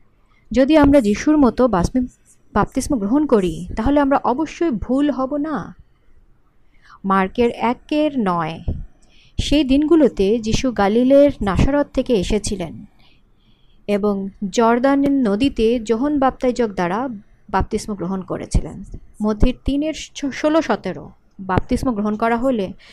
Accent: native